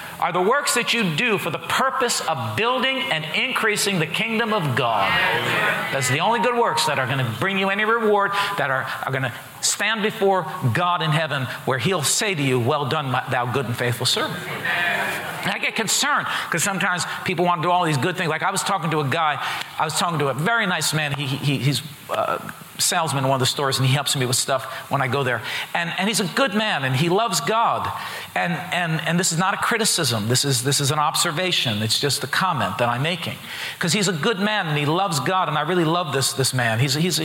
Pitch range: 140-185 Hz